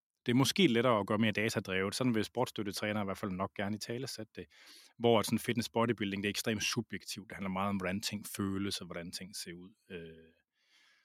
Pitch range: 90-115 Hz